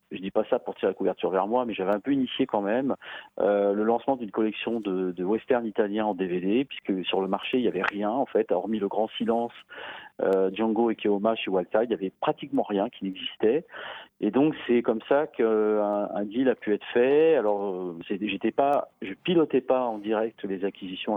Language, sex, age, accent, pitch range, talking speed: French, male, 40-59, French, 95-115 Hz, 225 wpm